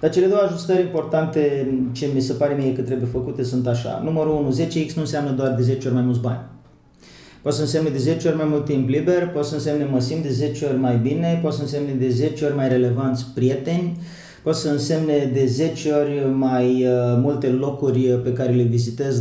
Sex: male